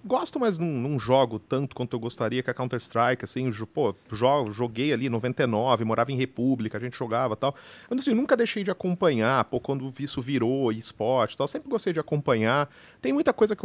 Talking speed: 215 wpm